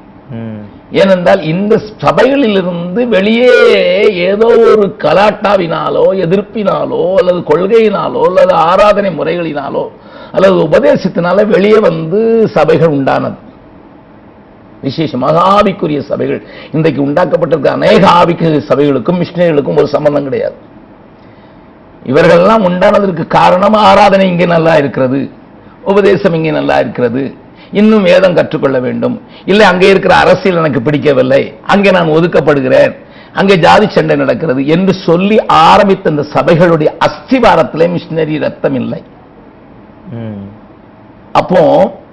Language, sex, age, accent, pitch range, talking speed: Tamil, male, 50-69, native, 155-210 Hz, 100 wpm